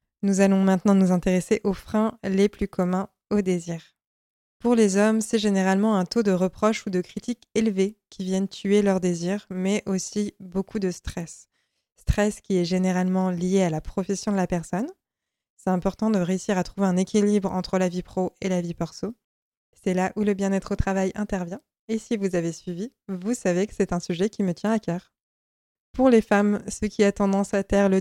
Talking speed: 205 wpm